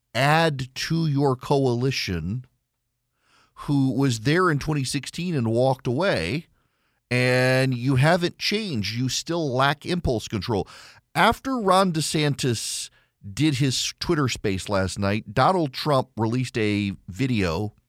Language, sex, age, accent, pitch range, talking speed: English, male, 40-59, American, 120-150 Hz, 115 wpm